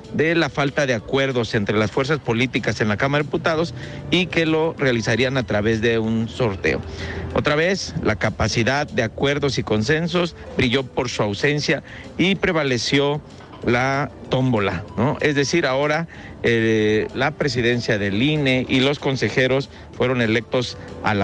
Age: 50-69